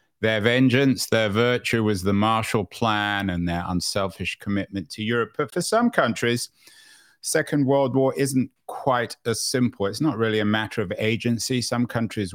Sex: male